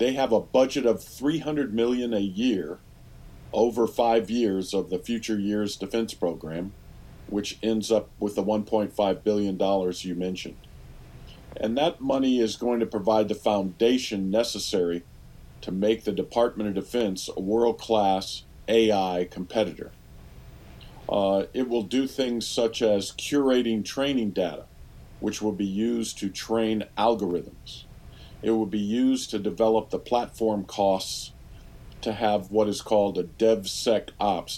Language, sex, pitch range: English, male, 95-115 Hz